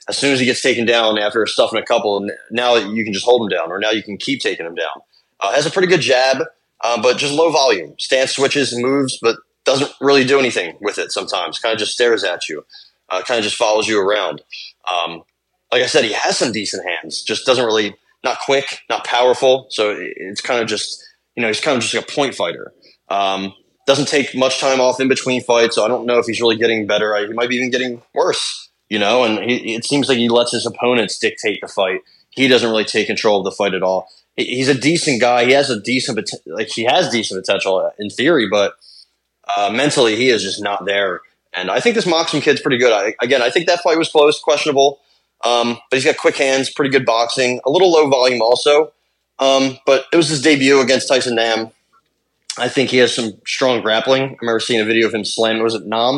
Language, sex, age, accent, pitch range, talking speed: English, male, 20-39, American, 115-140 Hz, 235 wpm